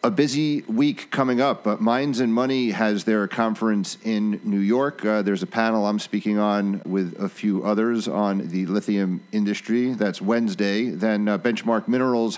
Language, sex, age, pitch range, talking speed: English, male, 40-59, 100-120 Hz, 175 wpm